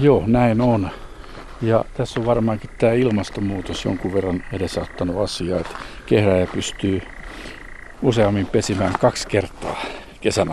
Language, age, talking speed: Finnish, 60-79, 120 wpm